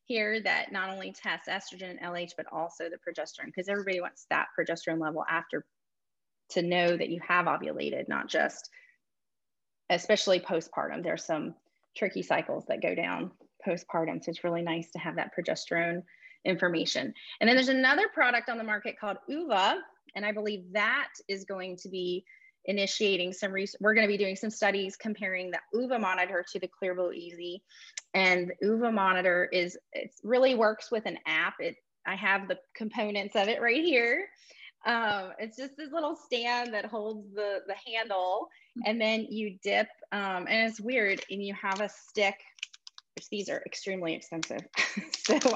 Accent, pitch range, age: American, 180-220 Hz, 30-49